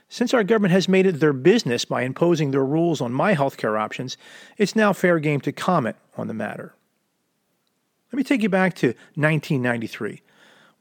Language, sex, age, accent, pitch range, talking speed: English, male, 40-59, American, 140-200 Hz, 185 wpm